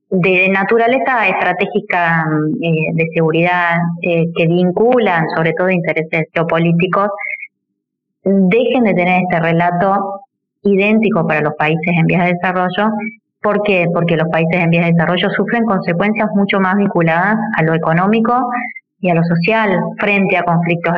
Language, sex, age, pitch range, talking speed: Spanish, female, 20-39, 165-195 Hz, 135 wpm